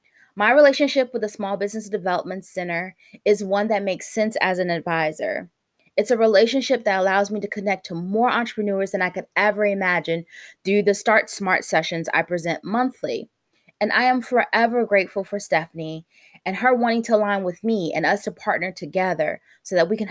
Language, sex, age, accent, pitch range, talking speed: English, female, 20-39, American, 175-255 Hz, 190 wpm